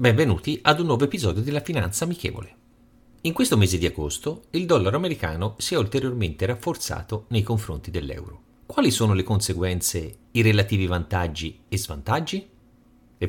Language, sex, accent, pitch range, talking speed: Italian, male, native, 90-125 Hz, 150 wpm